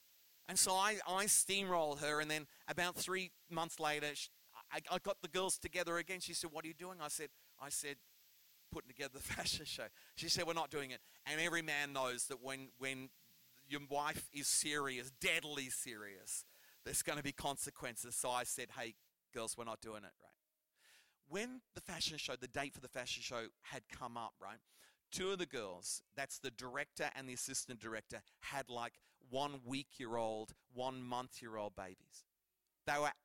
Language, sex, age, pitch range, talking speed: English, male, 40-59, 130-170 Hz, 180 wpm